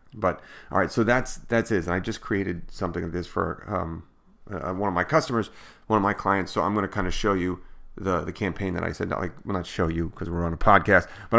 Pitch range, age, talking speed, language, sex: 90-105 Hz, 30-49, 275 wpm, English, male